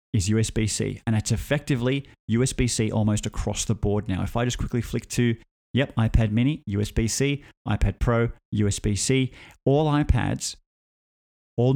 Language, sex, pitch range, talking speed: English, male, 105-130 Hz, 140 wpm